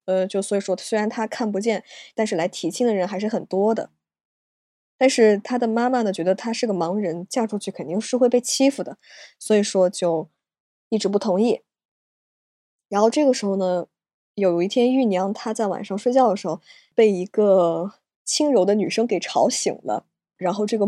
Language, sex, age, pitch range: Chinese, female, 20-39, 180-225 Hz